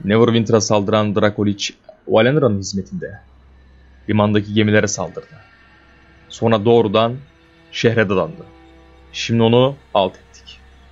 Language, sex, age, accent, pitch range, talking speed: Turkish, male, 30-49, native, 100-115 Hz, 90 wpm